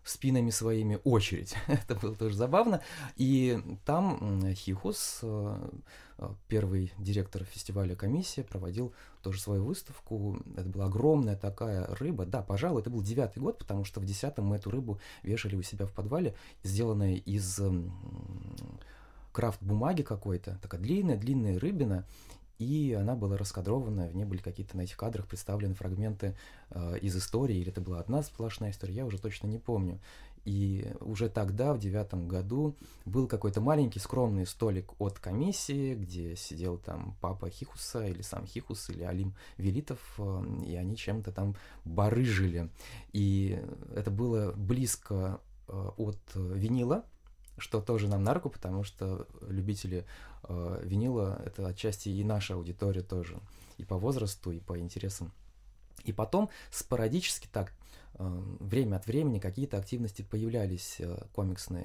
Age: 20-39